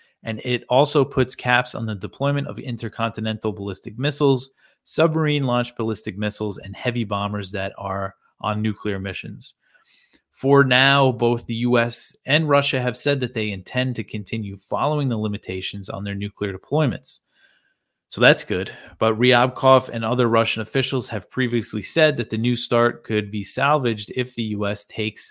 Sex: male